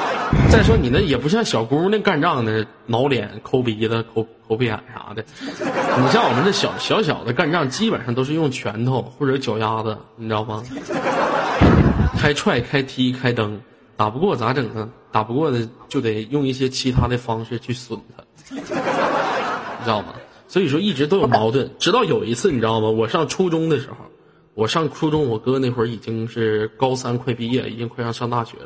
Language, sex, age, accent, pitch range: Chinese, male, 20-39, native, 115-150 Hz